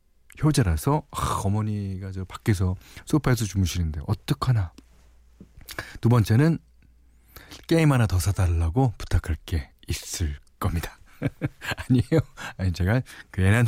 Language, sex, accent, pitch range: Korean, male, native, 90-140 Hz